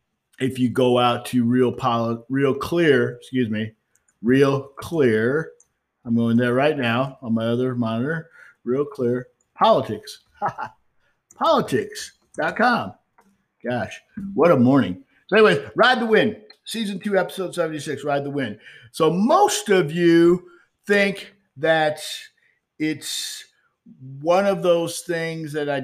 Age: 50-69